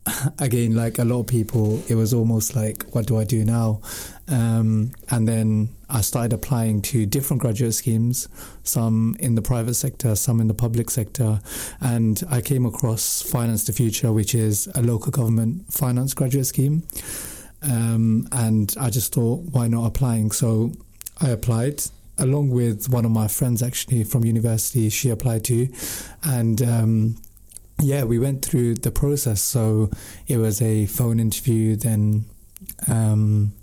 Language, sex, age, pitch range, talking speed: English, male, 30-49, 110-125 Hz, 160 wpm